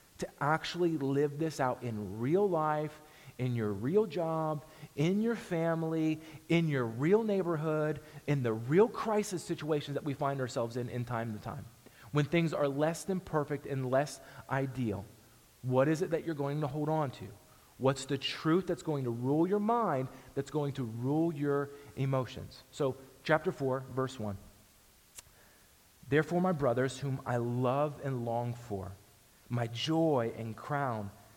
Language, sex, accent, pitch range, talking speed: English, male, American, 125-160 Hz, 165 wpm